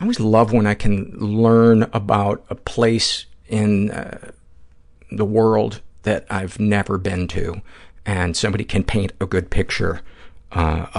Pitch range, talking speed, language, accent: 95-115 Hz, 145 wpm, English, American